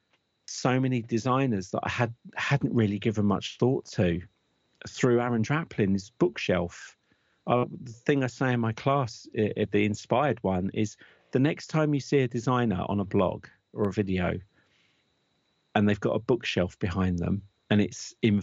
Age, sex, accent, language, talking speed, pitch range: 40-59, male, British, English, 175 wpm, 100-115 Hz